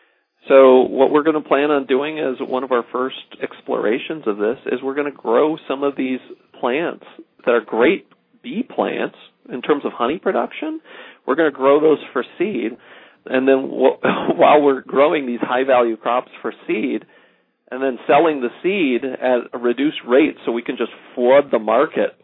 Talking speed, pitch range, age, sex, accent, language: 185 wpm, 125-185 Hz, 40-59, male, American, English